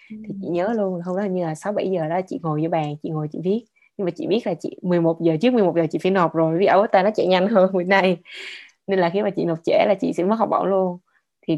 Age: 20-39